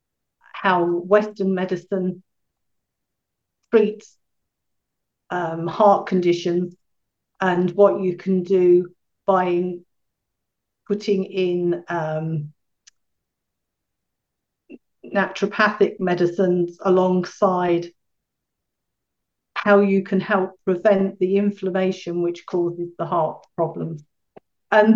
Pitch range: 175-195 Hz